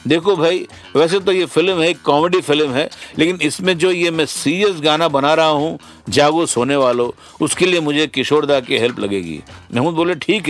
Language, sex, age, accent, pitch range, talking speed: Hindi, male, 60-79, native, 150-185 Hz, 195 wpm